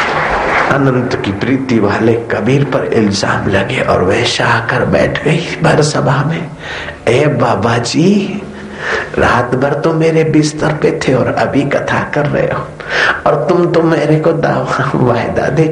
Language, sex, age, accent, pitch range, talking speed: Hindi, male, 50-69, native, 135-170 Hz, 155 wpm